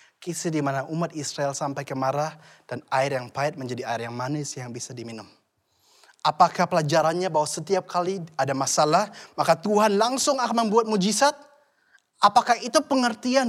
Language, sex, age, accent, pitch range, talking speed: Indonesian, male, 20-39, native, 165-235 Hz, 145 wpm